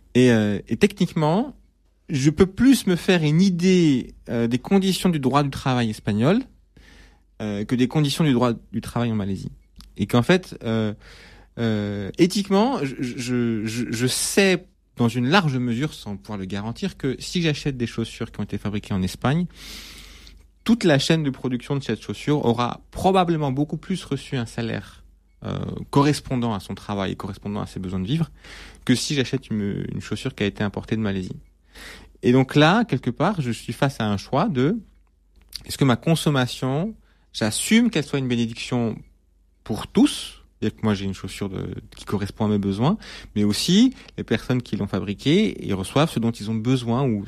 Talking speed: 185 wpm